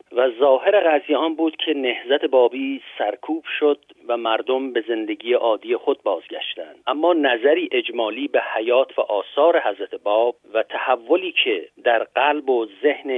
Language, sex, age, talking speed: Persian, male, 50-69, 145 wpm